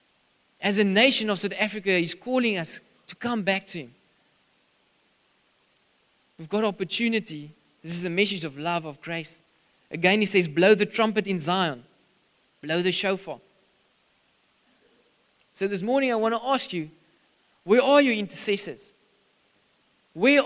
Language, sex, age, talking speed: English, male, 20-39, 145 wpm